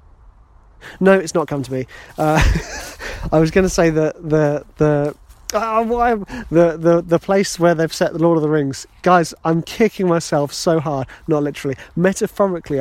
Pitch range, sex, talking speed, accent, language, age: 125-185 Hz, male, 185 wpm, British, English, 30-49